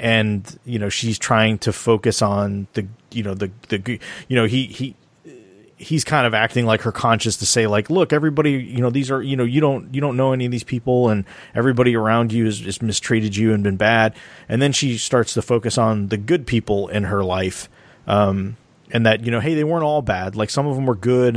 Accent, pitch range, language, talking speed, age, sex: American, 105-125 Hz, English, 235 wpm, 30-49, male